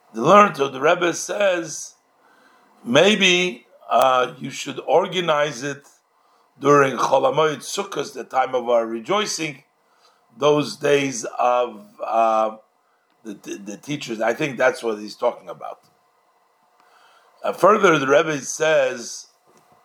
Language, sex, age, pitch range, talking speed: English, male, 50-69, 115-160 Hz, 120 wpm